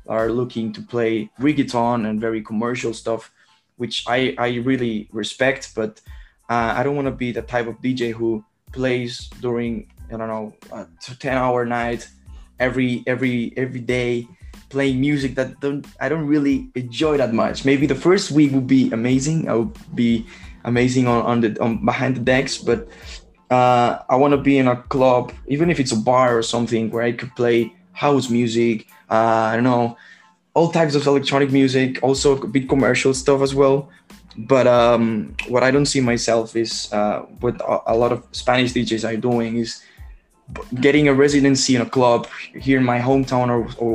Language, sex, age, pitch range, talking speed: English, male, 20-39, 115-135 Hz, 180 wpm